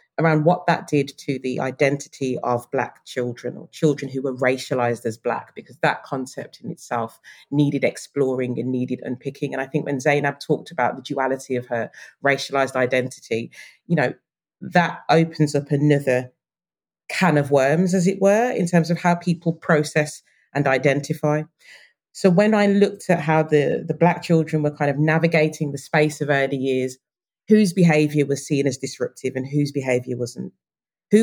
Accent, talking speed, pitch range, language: British, 175 wpm, 130-165 Hz, English